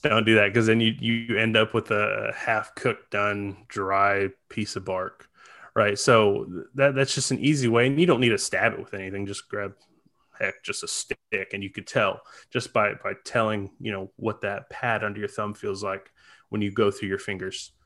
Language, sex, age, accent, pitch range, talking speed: English, male, 20-39, American, 100-115 Hz, 220 wpm